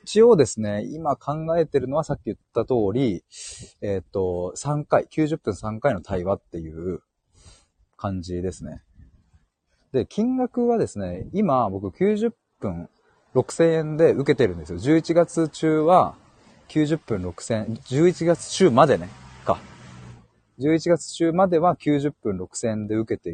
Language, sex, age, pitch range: Japanese, male, 30-49, 100-155 Hz